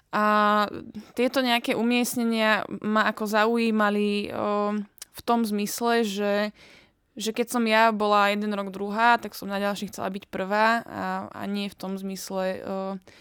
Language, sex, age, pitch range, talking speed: Czech, female, 20-39, 195-215 Hz, 150 wpm